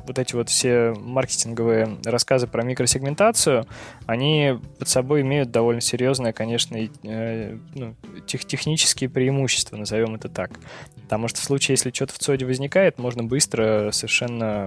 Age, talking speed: 20-39, 130 wpm